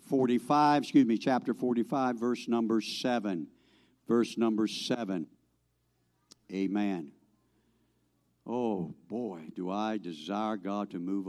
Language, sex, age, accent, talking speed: English, male, 60-79, American, 105 wpm